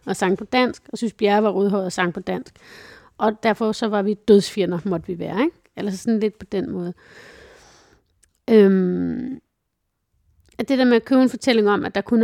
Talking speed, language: 210 wpm, Danish